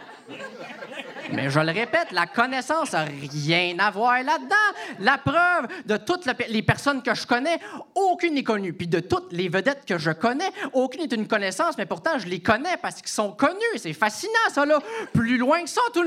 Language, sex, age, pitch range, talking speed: French, male, 30-49, 195-320 Hz, 200 wpm